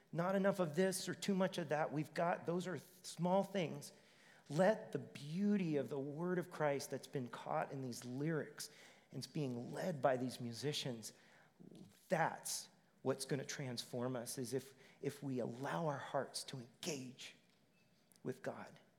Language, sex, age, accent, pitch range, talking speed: English, male, 40-59, American, 125-170 Hz, 165 wpm